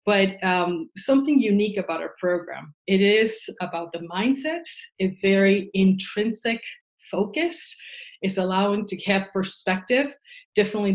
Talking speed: 120 wpm